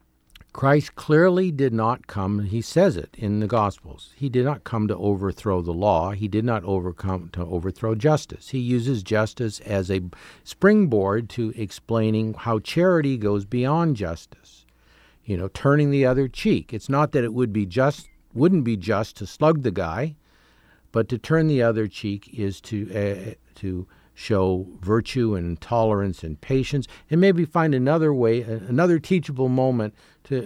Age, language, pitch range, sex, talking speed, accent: 50-69, English, 100-145 Hz, male, 165 wpm, American